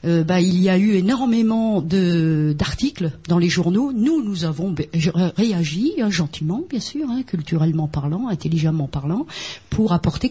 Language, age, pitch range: French, 50-69, 160-215 Hz